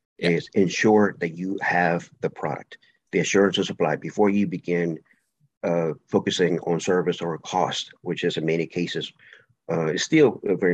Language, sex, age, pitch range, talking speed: English, male, 50-69, 85-100 Hz, 160 wpm